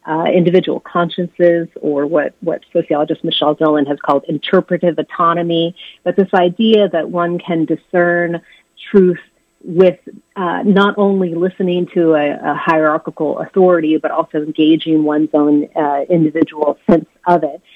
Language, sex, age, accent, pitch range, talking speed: English, female, 30-49, American, 155-185 Hz, 140 wpm